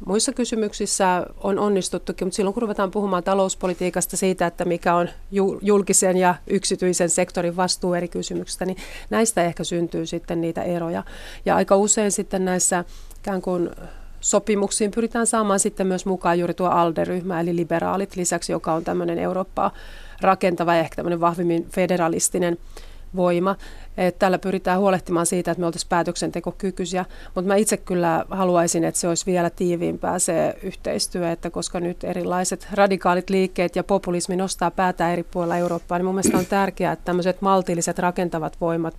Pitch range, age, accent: 175-195 Hz, 30-49, native